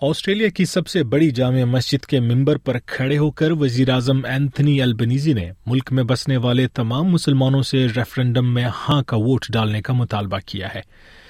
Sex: male